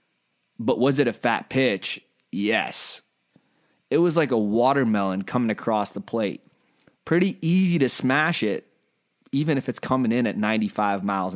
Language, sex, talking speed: English, male, 155 wpm